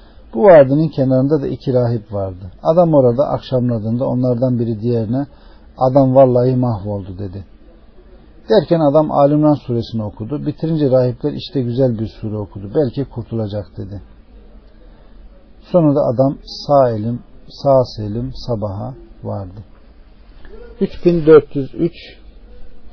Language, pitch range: Turkish, 110-140 Hz